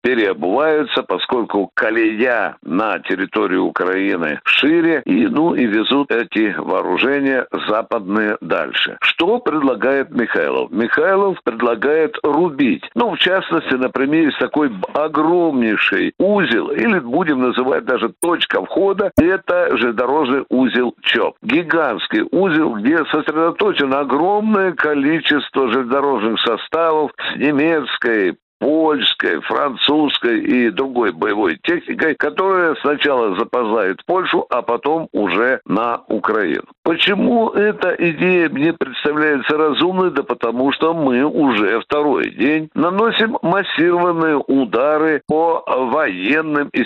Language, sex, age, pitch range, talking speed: Russian, male, 60-79, 145-210 Hz, 105 wpm